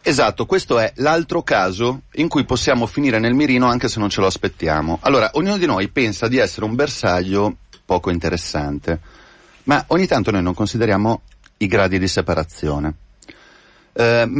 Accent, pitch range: native, 85-120 Hz